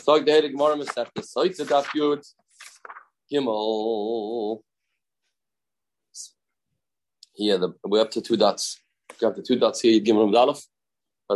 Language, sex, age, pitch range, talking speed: English, male, 30-49, 120-170 Hz, 75 wpm